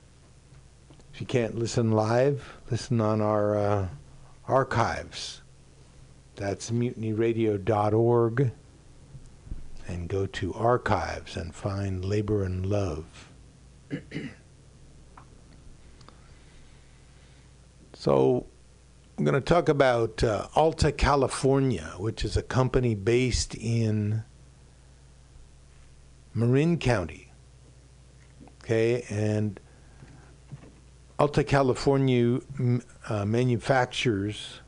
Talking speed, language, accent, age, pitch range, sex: 75 wpm, English, American, 60-79, 90-125 Hz, male